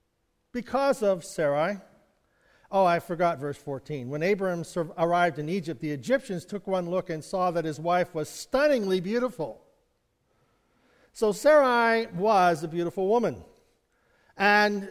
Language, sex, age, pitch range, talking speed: English, male, 50-69, 170-225 Hz, 135 wpm